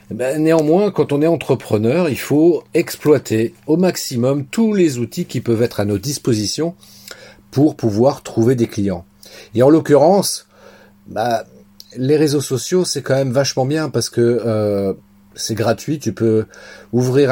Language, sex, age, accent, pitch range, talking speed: French, male, 40-59, French, 115-155 Hz, 150 wpm